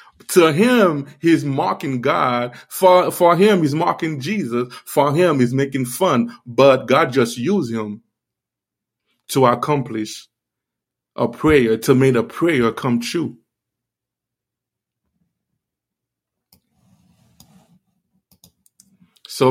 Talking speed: 100 wpm